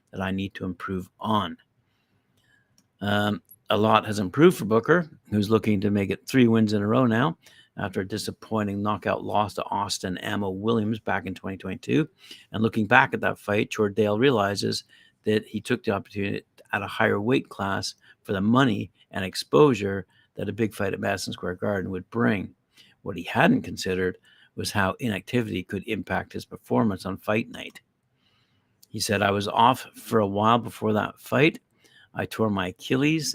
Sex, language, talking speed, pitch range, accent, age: male, English, 180 wpm, 100-115 Hz, American, 60-79